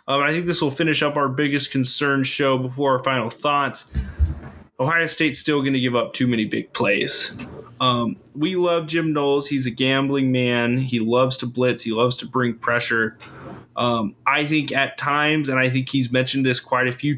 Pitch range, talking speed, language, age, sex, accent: 120-145 Hz, 205 wpm, English, 20-39, male, American